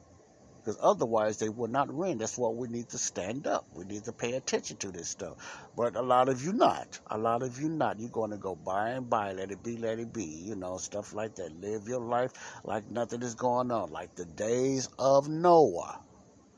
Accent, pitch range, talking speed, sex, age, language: American, 95-120 Hz, 230 wpm, male, 60-79, English